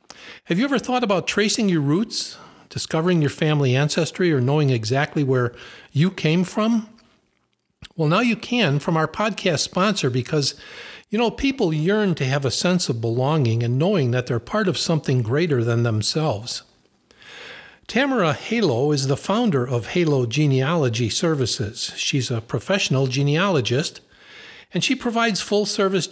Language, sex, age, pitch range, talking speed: English, male, 50-69, 145-200 Hz, 150 wpm